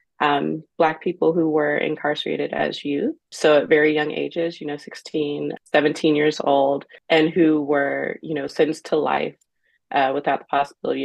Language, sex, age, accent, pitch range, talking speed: English, female, 20-39, American, 150-165 Hz, 165 wpm